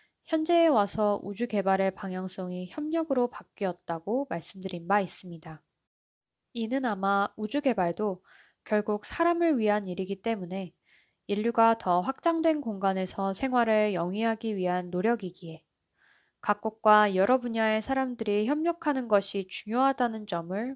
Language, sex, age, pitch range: Korean, female, 20-39, 185-245 Hz